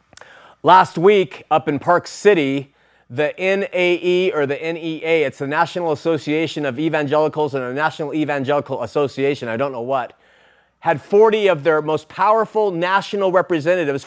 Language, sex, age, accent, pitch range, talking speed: English, male, 30-49, American, 155-205 Hz, 145 wpm